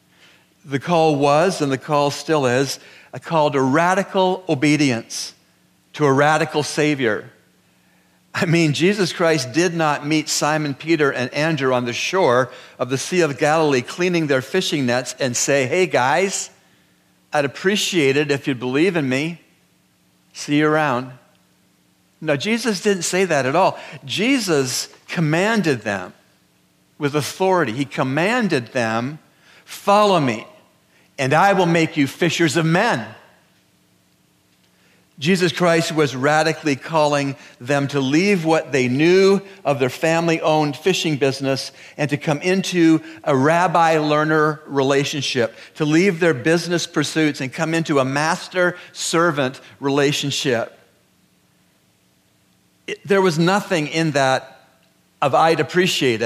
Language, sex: English, male